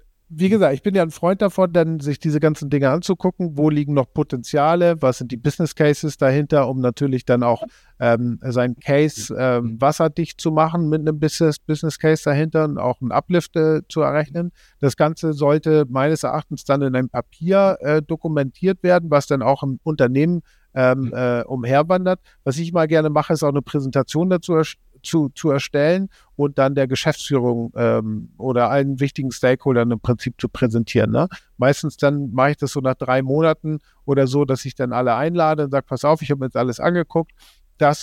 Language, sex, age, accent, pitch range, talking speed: German, male, 50-69, German, 130-160 Hz, 195 wpm